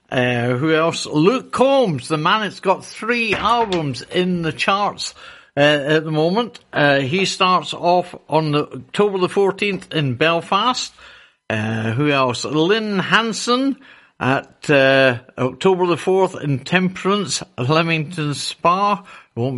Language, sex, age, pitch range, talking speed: English, male, 60-79, 140-200 Hz, 135 wpm